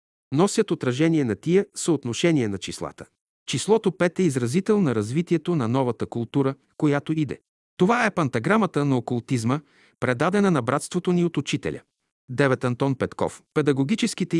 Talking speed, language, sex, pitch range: 140 wpm, Bulgarian, male, 120-170 Hz